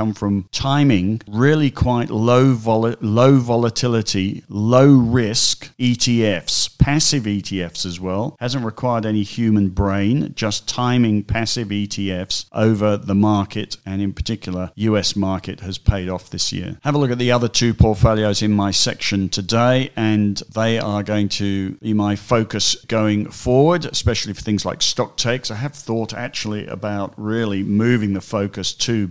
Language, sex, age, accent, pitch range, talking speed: English, male, 50-69, British, 100-120 Hz, 155 wpm